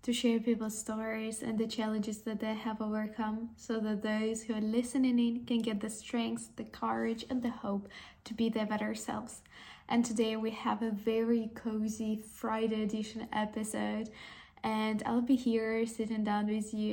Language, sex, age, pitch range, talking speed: English, female, 10-29, 210-230 Hz, 175 wpm